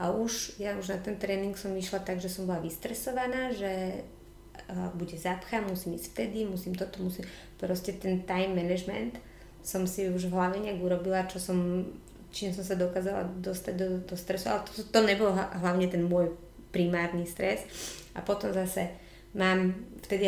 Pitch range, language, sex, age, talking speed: 180-200 Hz, Slovak, female, 20-39, 180 wpm